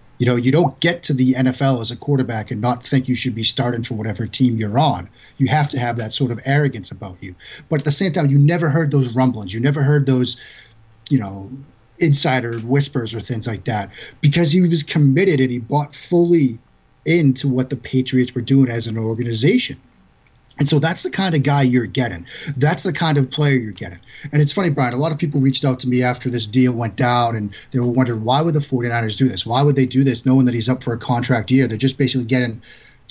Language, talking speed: English, 240 wpm